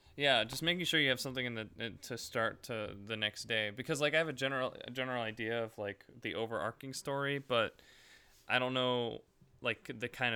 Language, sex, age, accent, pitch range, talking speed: English, male, 20-39, American, 110-155 Hz, 205 wpm